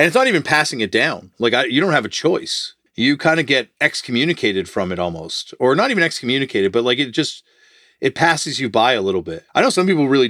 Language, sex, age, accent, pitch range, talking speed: English, male, 40-59, American, 100-125 Hz, 240 wpm